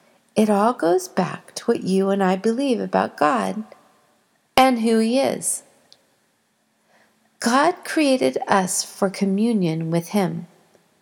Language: English